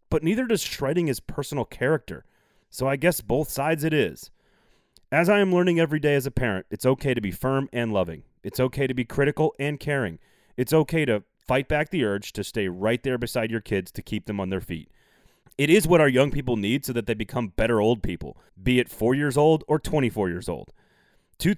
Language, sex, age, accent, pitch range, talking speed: English, male, 30-49, American, 105-145 Hz, 225 wpm